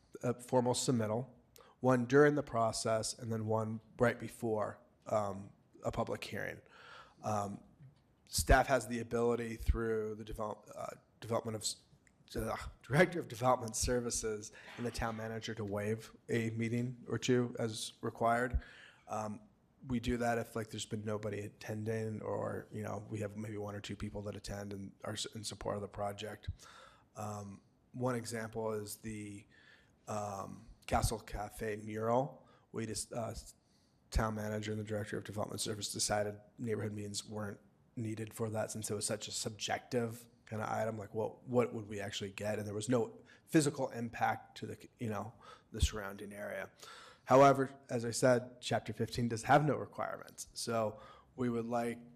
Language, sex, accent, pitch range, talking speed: English, male, American, 105-120 Hz, 165 wpm